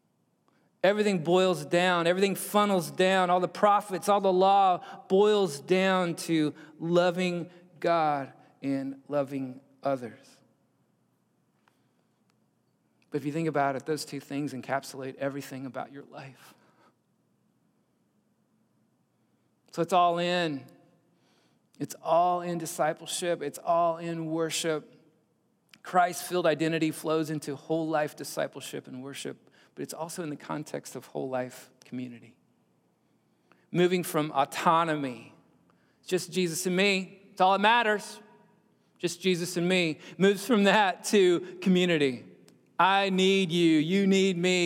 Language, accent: English, American